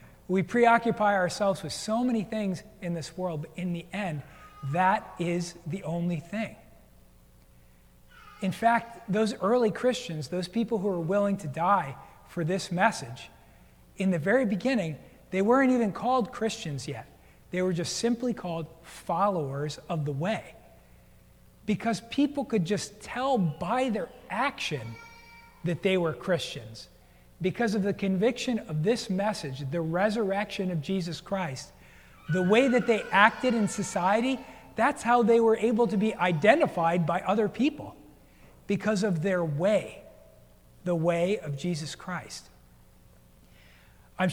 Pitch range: 155-215 Hz